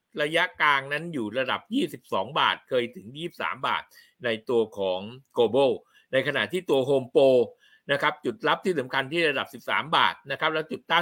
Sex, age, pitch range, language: male, 60-79, 130-200 Hz, Thai